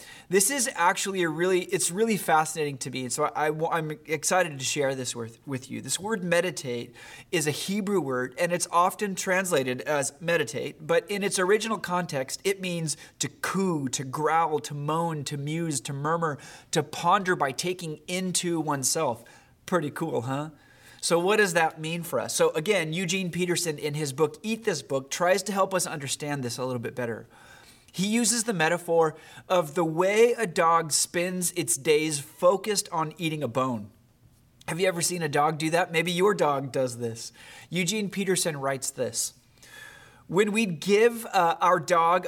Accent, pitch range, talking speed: American, 145-180 Hz, 175 wpm